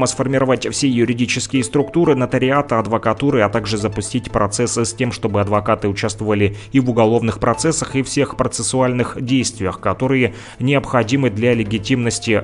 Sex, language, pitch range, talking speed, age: male, Russian, 110-130 Hz, 130 wpm, 30-49